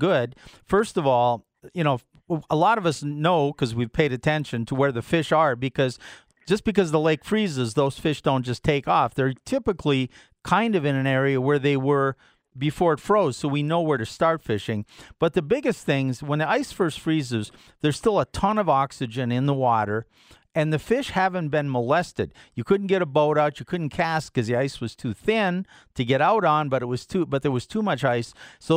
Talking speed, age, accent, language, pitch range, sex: 220 wpm, 40-59, American, English, 130-170 Hz, male